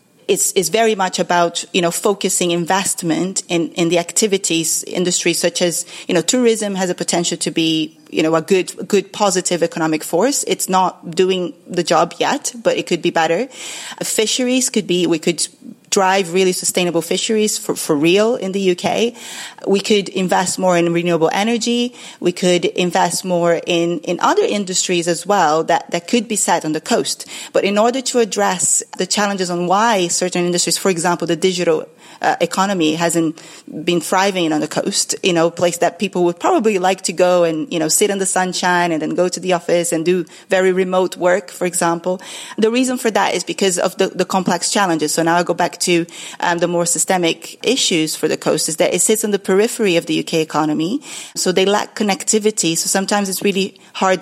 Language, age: English, 30-49